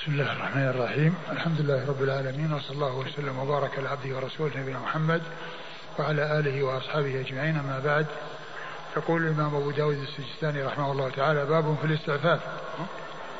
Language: Arabic